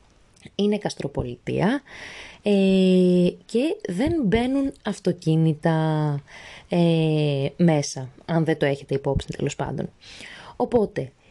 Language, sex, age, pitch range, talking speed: Greek, female, 20-39, 150-200 Hz, 90 wpm